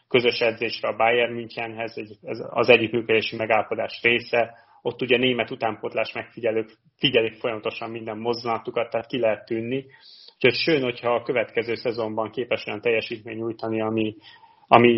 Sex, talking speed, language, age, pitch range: male, 140 wpm, Hungarian, 30-49, 110-135 Hz